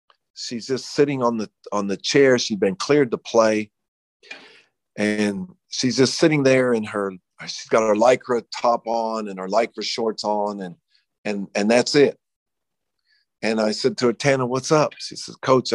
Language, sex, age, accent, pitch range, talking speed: English, male, 50-69, American, 100-125 Hz, 180 wpm